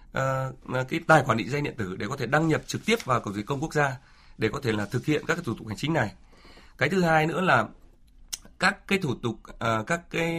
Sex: male